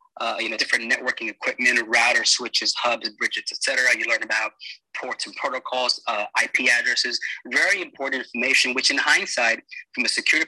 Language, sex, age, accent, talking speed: English, male, 20-39, American, 165 wpm